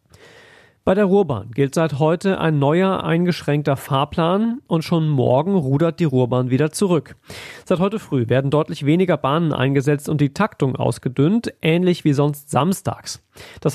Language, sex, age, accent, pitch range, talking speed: German, male, 40-59, German, 135-180 Hz, 155 wpm